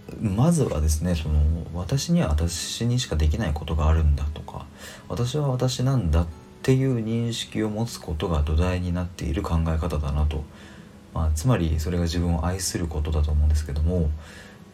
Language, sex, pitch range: Japanese, male, 80-105 Hz